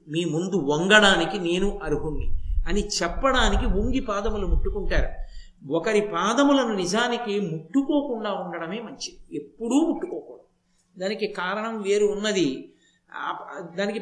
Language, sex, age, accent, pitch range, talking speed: Telugu, male, 50-69, native, 185-245 Hz, 100 wpm